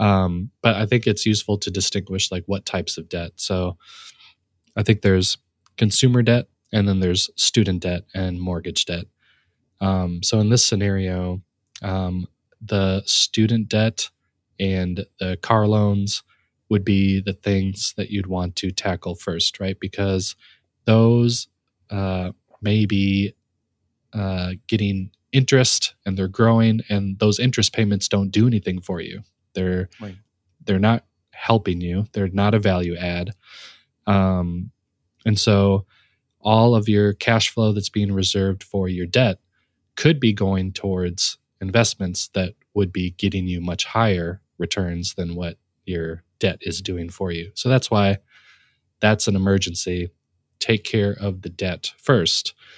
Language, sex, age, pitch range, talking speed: English, male, 20-39, 90-105 Hz, 145 wpm